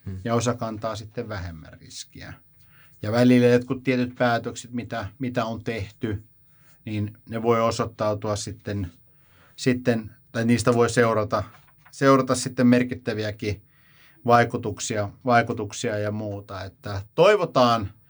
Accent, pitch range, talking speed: native, 105-125 Hz, 115 wpm